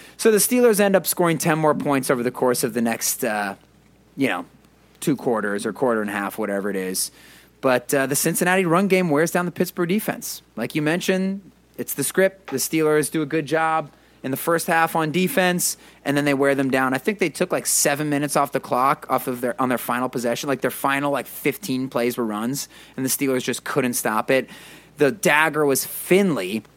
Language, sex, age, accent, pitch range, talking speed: English, male, 30-49, American, 120-170 Hz, 220 wpm